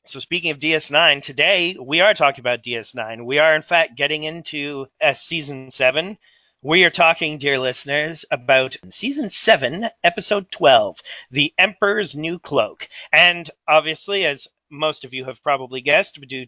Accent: American